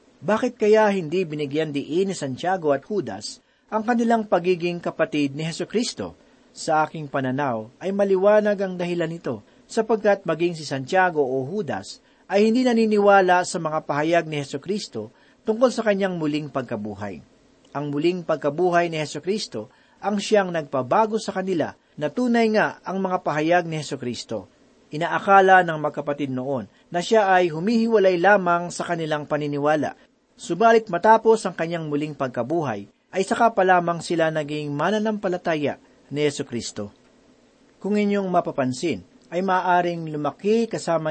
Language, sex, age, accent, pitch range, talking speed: Filipino, male, 40-59, native, 150-200 Hz, 140 wpm